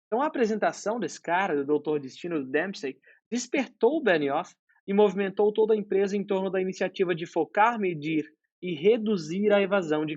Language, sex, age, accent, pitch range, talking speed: Portuguese, male, 20-39, Brazilian, 155-200 Hz, 170 wpm